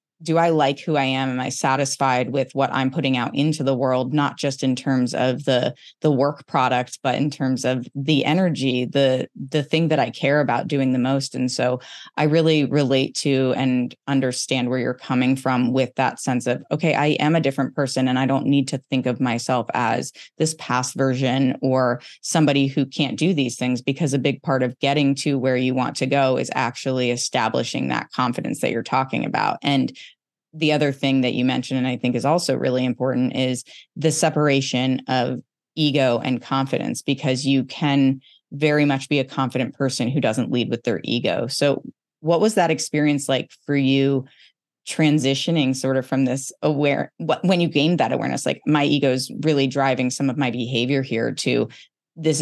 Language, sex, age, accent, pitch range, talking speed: English, female, 20-39, American, 130-145 Hz, 195 wpm